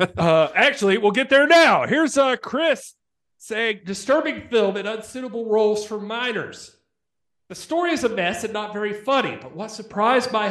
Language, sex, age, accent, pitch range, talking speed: English, male, 40-59, American, 160-220 Hz, 170 wpm